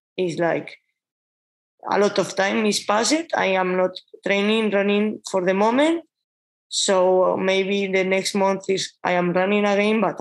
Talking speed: 160 wpm